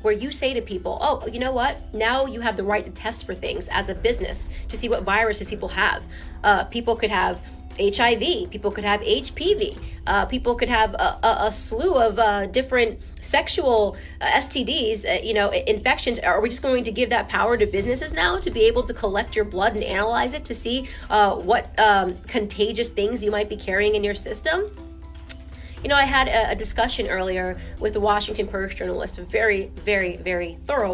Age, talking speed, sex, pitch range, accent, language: 20-39, 205 wpm, female, 195-235 Hz, American, English